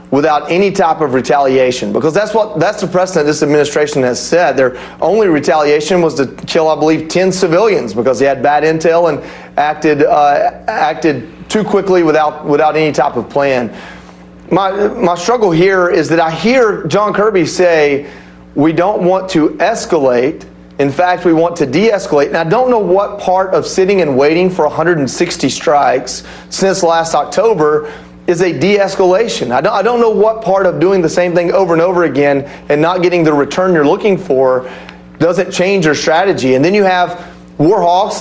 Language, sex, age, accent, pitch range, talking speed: English, male, 30-49, American, 150-185 Hz, 180 wpm